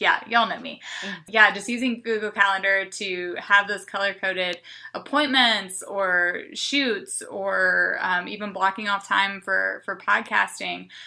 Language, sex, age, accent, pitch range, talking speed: English, female, 20-39, American, 190-235 Hz, 135 wpm